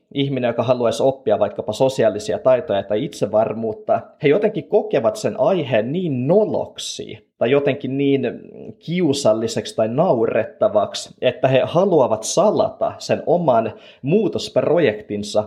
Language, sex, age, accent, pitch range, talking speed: Finnish, male, 30-49, native, 115-165 Hz, 115 wpm